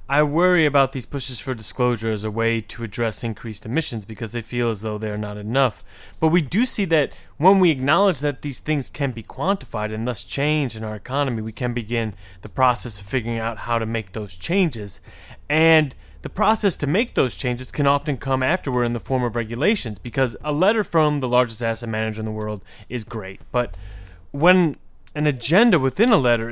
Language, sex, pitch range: English, male, 115-145 Hz